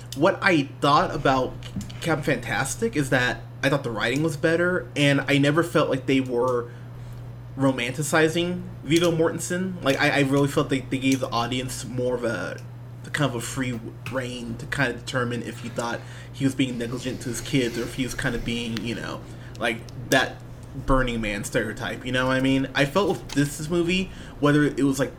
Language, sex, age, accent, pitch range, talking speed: English, male, 20-39, American, 120-160 Hz, 200 wpm